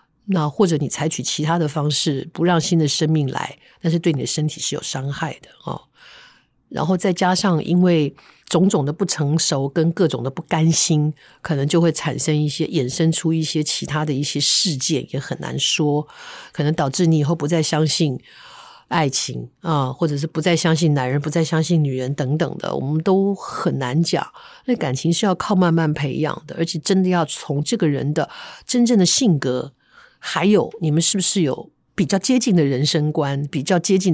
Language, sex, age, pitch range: Chinese, female, 50-69, 145-185 Hz